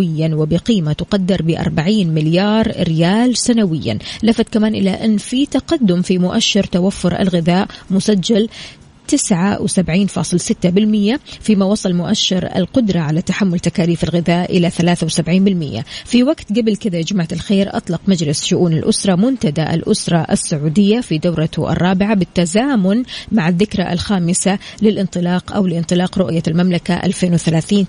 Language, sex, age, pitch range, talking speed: Arabic, female, 20-39, 175-215 Hz, 115 wpm